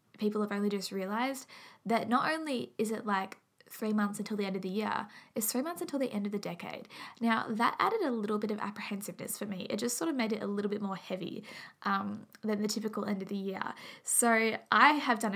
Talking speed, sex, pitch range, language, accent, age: 240 wpm, female, 205-235 Hz, English, Australian, 10-29